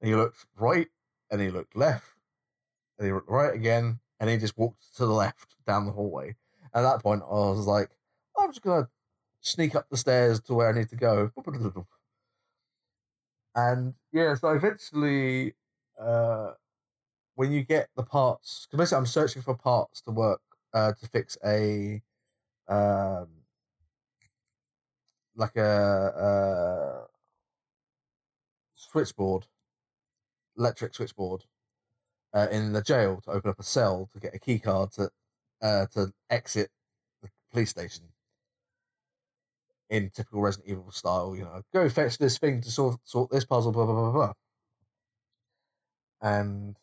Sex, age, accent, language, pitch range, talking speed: male, 30-49, British, English, 100-125 Hz, 145 wpm